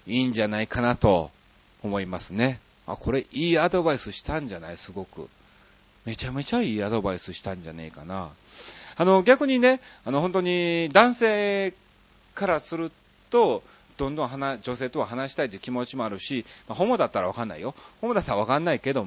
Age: 40-59